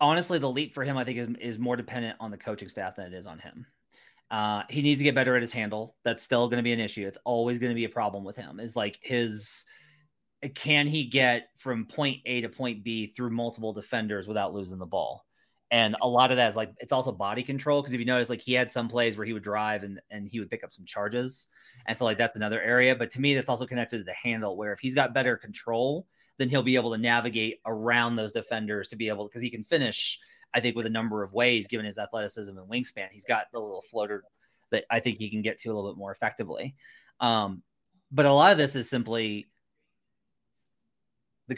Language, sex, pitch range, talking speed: English, male, 110-130 Hz, 245 wpm